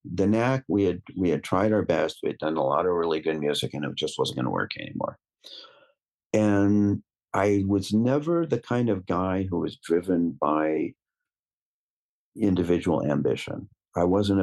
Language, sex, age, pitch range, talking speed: English, male, 50-69, 80-105 Hz, 170 wpm